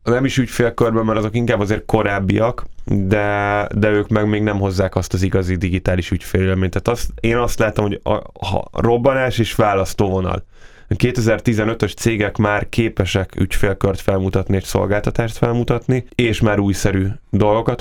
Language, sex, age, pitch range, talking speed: Hungarian, male, 10-29, 95-110 Hz, 155 wpm